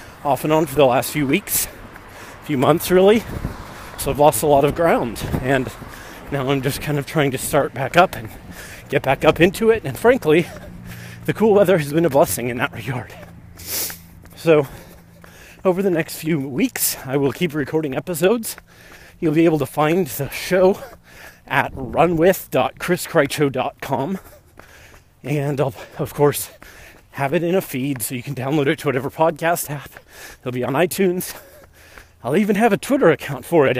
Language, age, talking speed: English, 30-49, 175 wpm